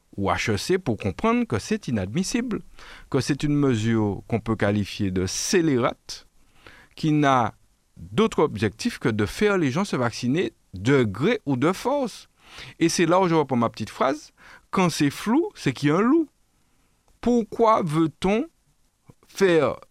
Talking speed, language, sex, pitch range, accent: 160 wpm, French, male, 105-165 Hz, French